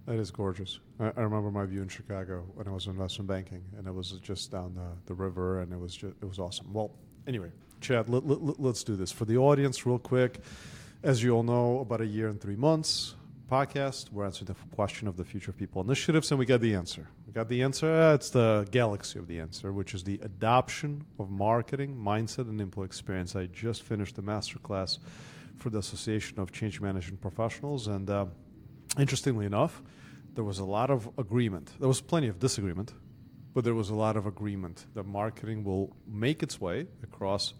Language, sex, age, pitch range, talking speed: English, male, 40-59, 100-130 Hz, 210 wpm